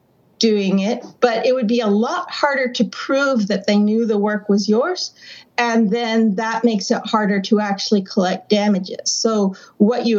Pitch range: 200-245 Hz